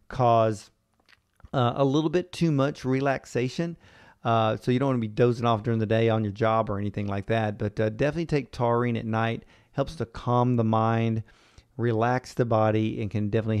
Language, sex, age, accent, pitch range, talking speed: English, male, 40-59, American, 110-135 Hz, 200 wpm